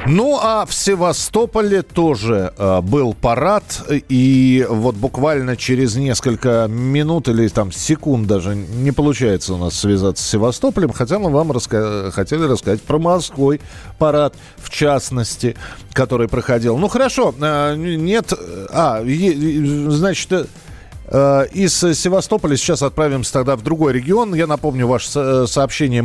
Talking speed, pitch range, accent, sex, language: 120 wpm, 120-155 Hz, native, male, Russian